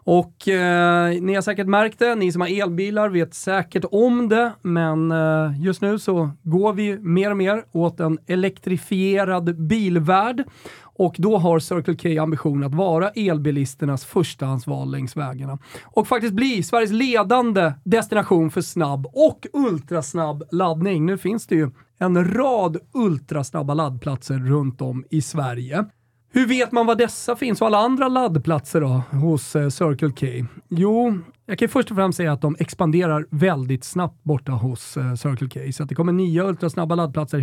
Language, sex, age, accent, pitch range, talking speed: Swedish, male, 30-49, native, 140-200 Hz, 165 wpm